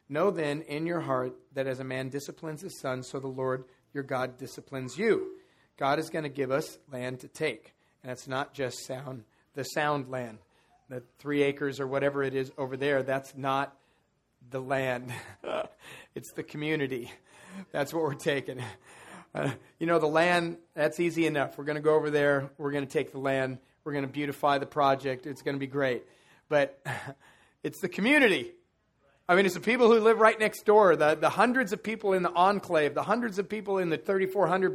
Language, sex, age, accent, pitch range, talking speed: English, male, 40-59, American, 135-185 Hz, 200 wpm